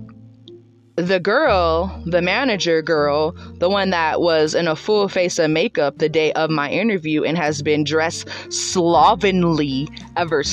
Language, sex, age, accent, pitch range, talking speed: English, female, 20-39, American, 155-210 Hz, 150 wpm